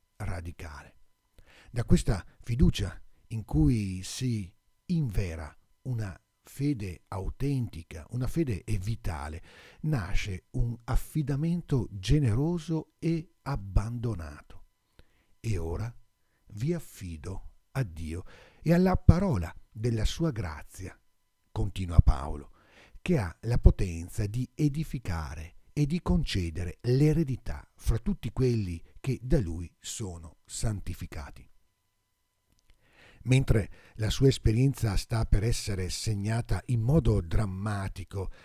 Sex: male